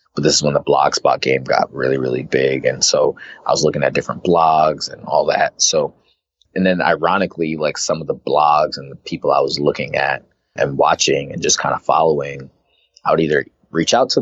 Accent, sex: American, male